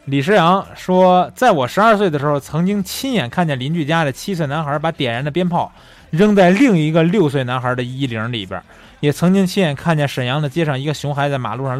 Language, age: Chinese, 20-39